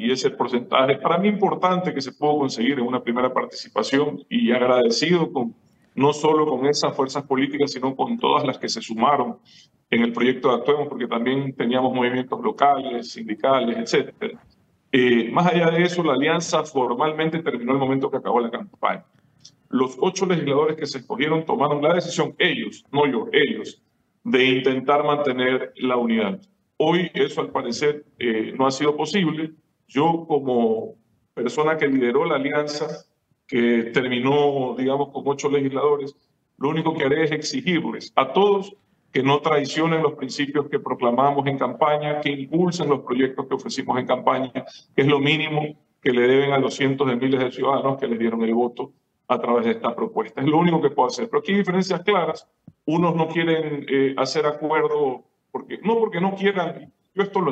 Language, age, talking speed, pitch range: English, 40-59, 180 wpm, 130-160 Hz